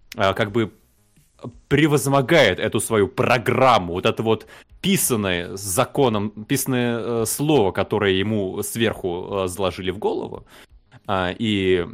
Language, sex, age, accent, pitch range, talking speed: Russian, male, 20-39, native, 95-125 Hz, 100 wpm